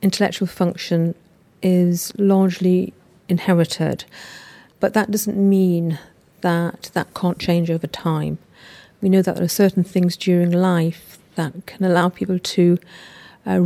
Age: 50-69